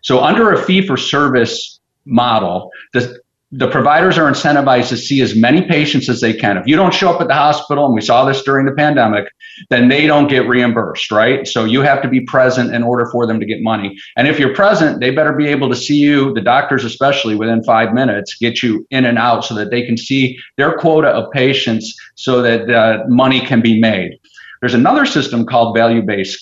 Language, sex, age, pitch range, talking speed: English, male, 50-69, 115-145 Hz, 215 wpm